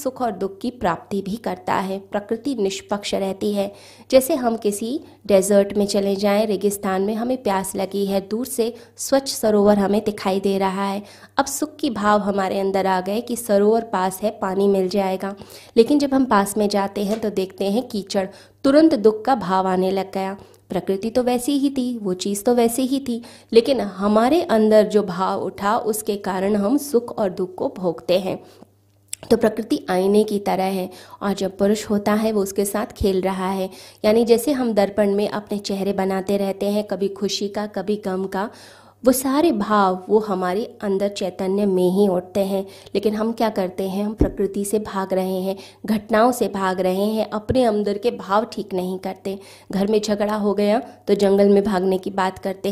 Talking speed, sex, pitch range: 195 wpm, female, 190-220 Hz